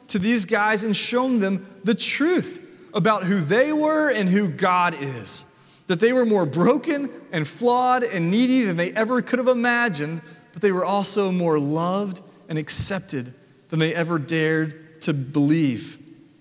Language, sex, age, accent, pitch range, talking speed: English, male, 30-49, American, 160-215 Hz, 165 wpm